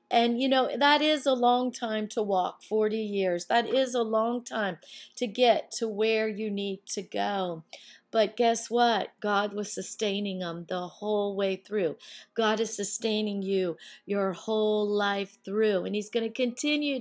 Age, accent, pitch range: 40-59, American, 200-260 Hz